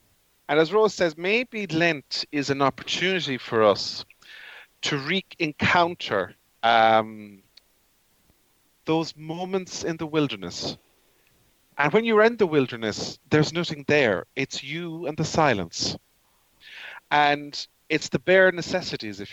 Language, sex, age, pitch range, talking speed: English, male, 40-59, 120-160 Hz, 120 wpm